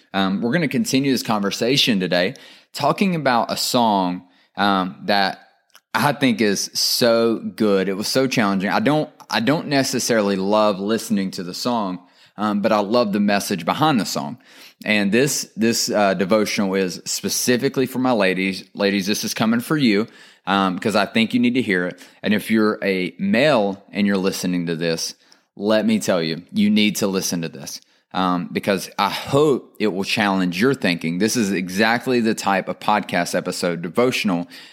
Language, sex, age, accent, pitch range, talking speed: English, male, 30-49, American, 90-110 Hz, 180 wpm